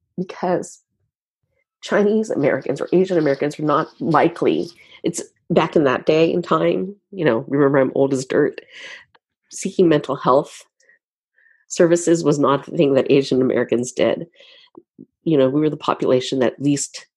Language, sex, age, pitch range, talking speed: English, female, 40-59, 135-205 Hz, 140 wpm